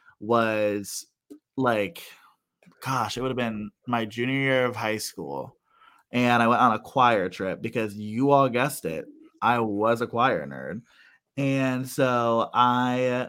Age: 20-39